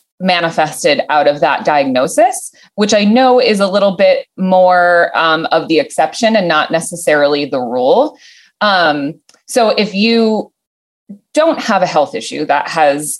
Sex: female